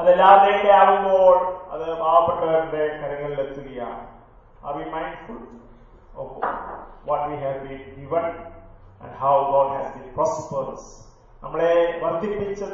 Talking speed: 70 wpm